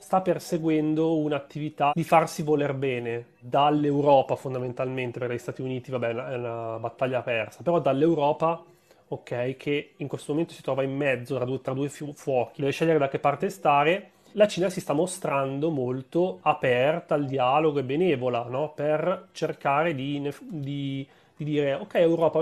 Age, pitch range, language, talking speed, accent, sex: 30-49, 135-170 Hz, Italian, 160 wpm, native, male